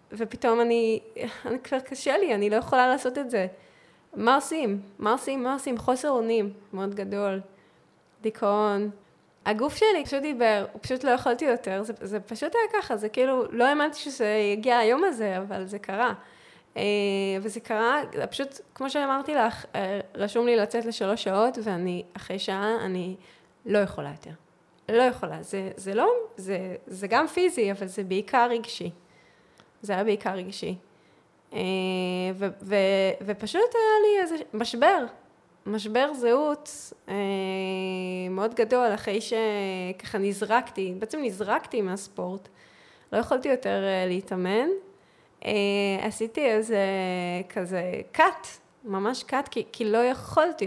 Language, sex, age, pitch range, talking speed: Hebrew, female, 20-39, 195-255 Hz, 130 wpm